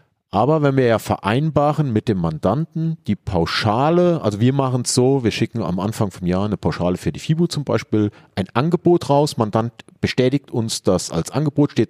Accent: German